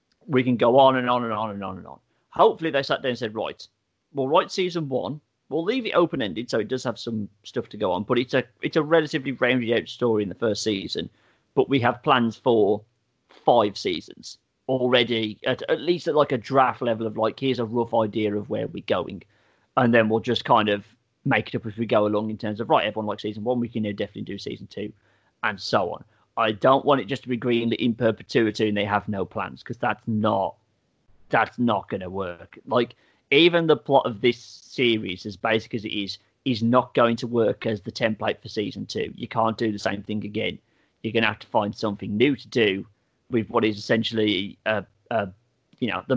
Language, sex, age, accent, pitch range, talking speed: English, male, 30-49, British, 105-125 Hz, 235 wpm